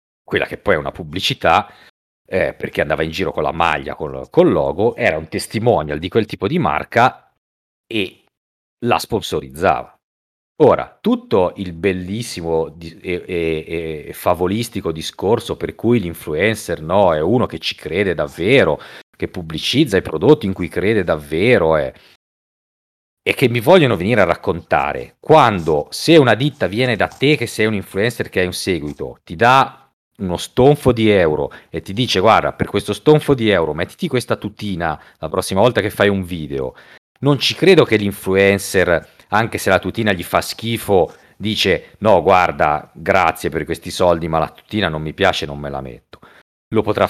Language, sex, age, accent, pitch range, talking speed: Italian, male, 40-59, native, 85-115 Hz, 170 wpm